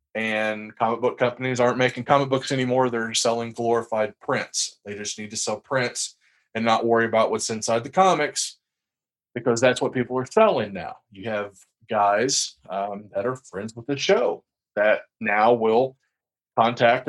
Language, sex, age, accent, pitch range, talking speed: English, male, 40-59, American, 110-145 Hz, 170 wpm